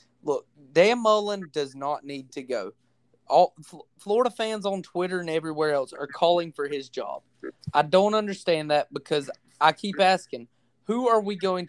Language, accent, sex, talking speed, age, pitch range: English, American, male, 175 wpm, 20-39, 135-180 Hz